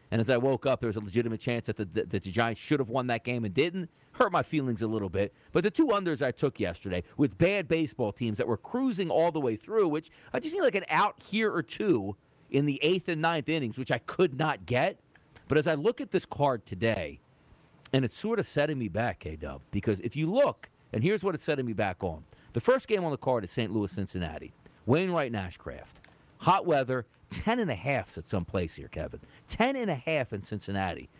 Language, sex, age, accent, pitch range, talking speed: English, male, 40-59, American, 110-160 Hz, 225 wpm